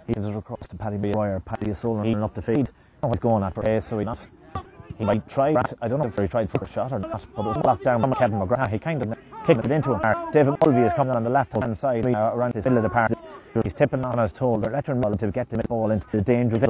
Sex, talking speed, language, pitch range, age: male, 280 wpm, English, 105-125 Hz, 30-49